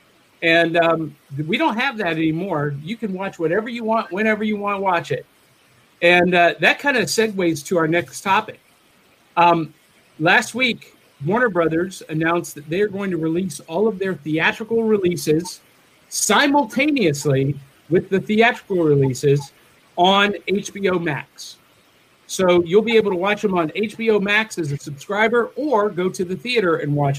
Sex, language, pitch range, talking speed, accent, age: male, English, 160-215 Hz, 160 wpm, American, 50-69